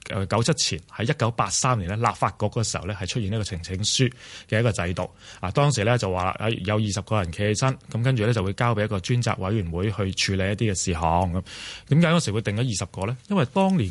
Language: Chinese